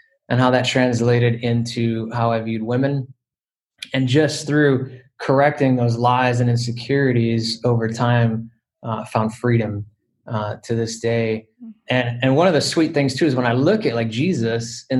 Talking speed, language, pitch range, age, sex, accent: 170 wpm, English, 120-135 Hz, 20-39, male, American